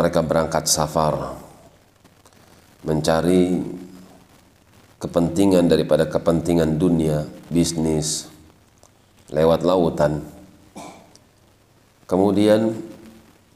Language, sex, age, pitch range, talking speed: Indonesian, male, 40-59, 80-95 Hz, 55 wpm